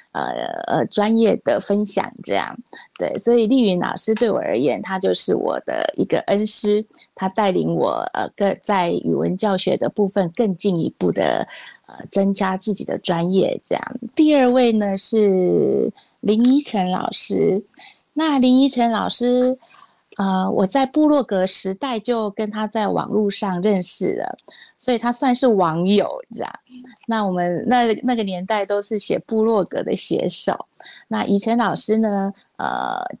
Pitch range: 195-235 Hz